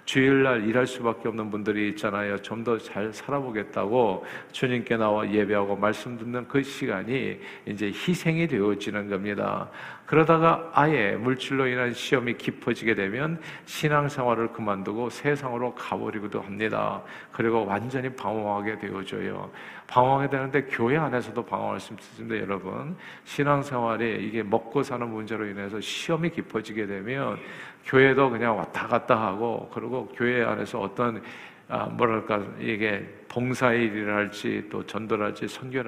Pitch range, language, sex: 110-140 Hz, Korean, male